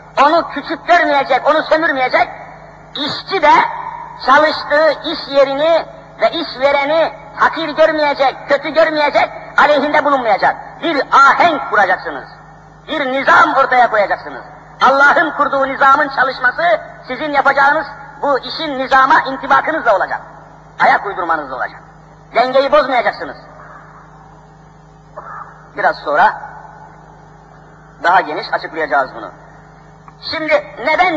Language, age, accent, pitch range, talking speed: Turkish, 50-69, native, 250-310 Hz, 95 wpm